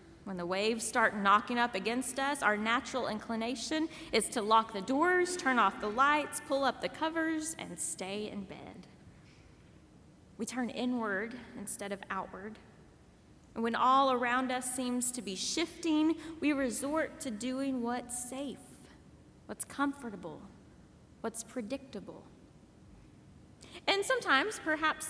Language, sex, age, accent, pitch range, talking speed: English, female, 20-39, American, 215-275 Hz, 135 wpm